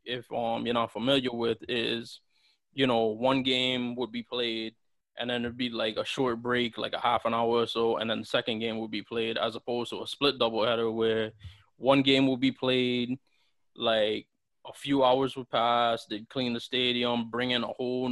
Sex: male